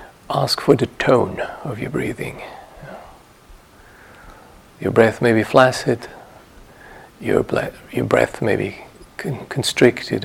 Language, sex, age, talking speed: English, male, 50-69, 115 wpm